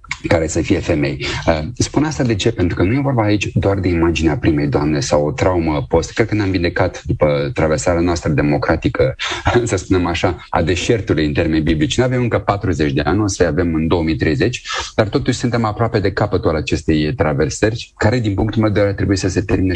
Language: Romanian